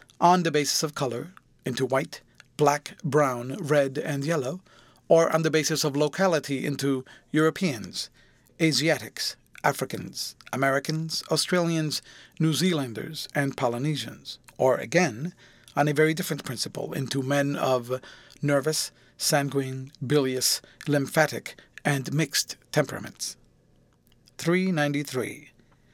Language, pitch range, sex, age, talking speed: English, 130-160 Hz, male, 40-59, 105 wpm